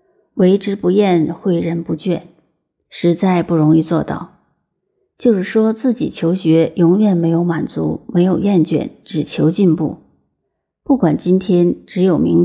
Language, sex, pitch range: Chinese, female, 165-200 Hz